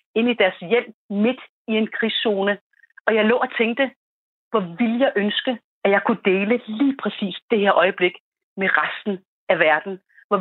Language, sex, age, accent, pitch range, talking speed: Danish, female, 40-59, native, 195-235 Hz, 180 wpm